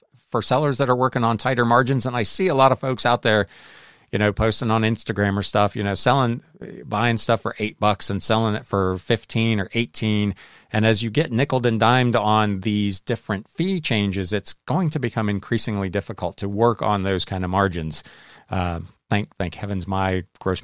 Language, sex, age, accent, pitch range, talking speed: English, male, 40-59, American, 95-120 Hz, 205 wpm